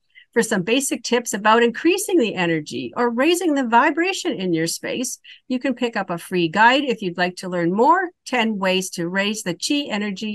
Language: English